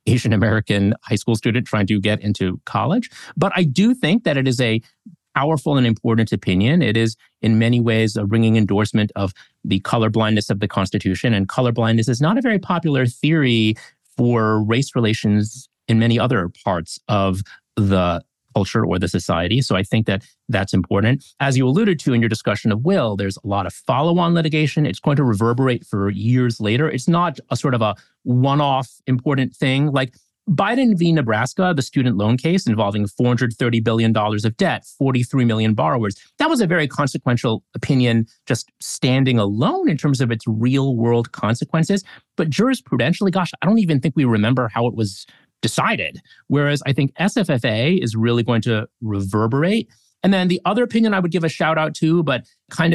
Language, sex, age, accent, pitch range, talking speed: English, male, 30-49, American, 105-145 Hz, 185 wpm